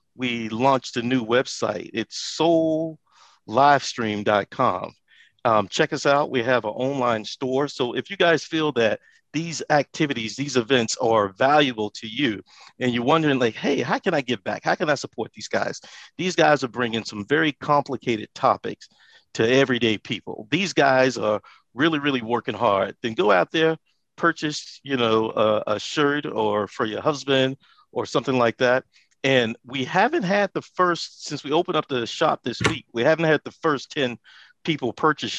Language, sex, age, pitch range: English, male, 50-69, 115-150 Hz